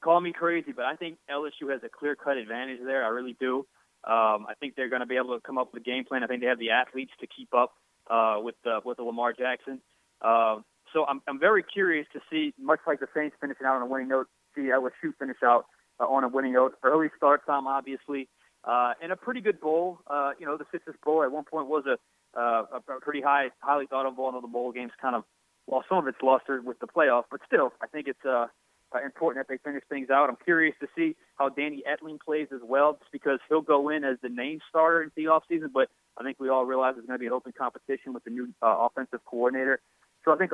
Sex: male